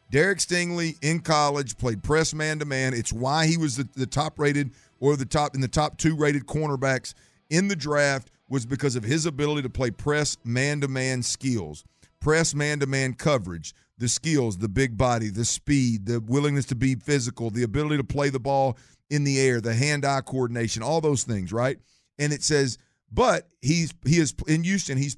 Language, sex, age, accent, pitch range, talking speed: English, male, 50-69, American, 125-150 Hz, 185 wpm